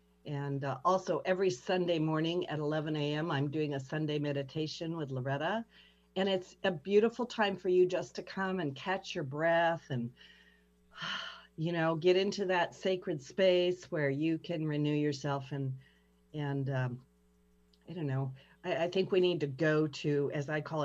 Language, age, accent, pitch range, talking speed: English, 50-69, American, 140-175 Hz, 175 wpm